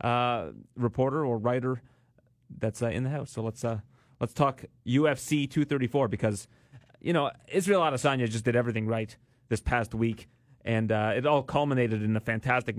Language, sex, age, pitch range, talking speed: English, male, 30-49, 115-145 Hz, 170 wpm